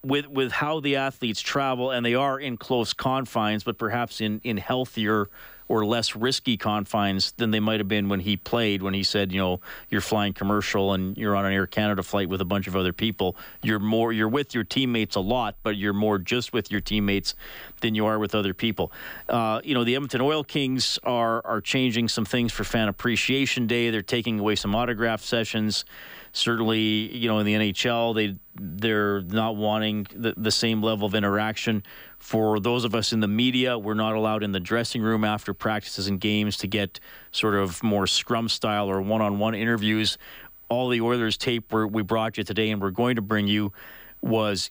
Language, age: English, 40-59